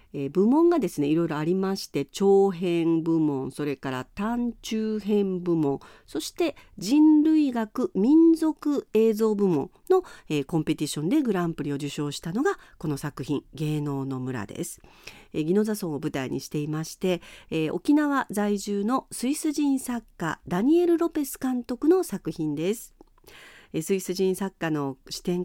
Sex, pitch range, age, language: female, 160-245 Hz, 50-69, Japanese